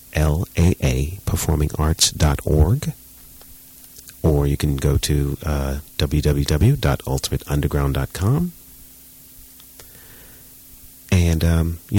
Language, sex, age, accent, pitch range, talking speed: English, male, 40-59, American, 70-90 Hz, 70 wpm